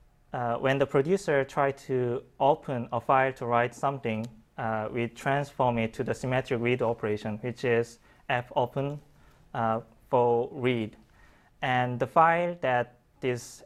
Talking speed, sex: 140 wpm, male